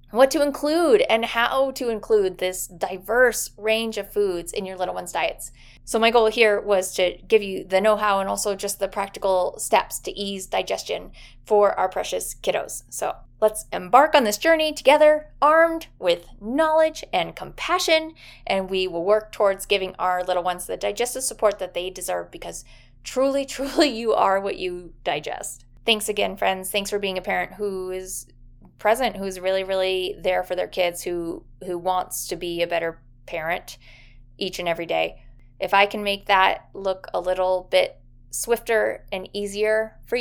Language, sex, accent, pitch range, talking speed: English, female, American, 180-225 Hz, 175 wpm